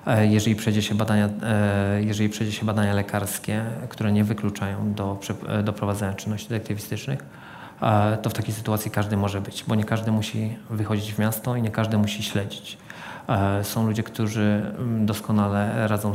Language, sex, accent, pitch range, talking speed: Polish, male, native, 105-110 Hz, 140 wpm